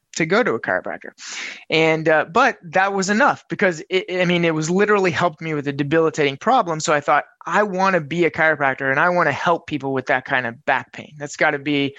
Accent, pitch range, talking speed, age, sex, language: American, 135-165 Hz, 245 wpm, 20-39, male, English